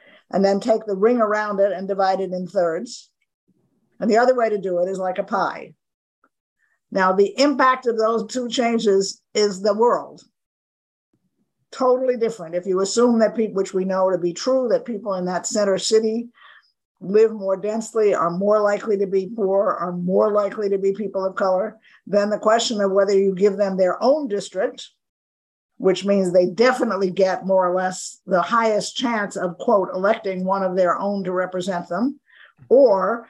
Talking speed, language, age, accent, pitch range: 185 wpm, English, 50-69, American, 190-230 Hz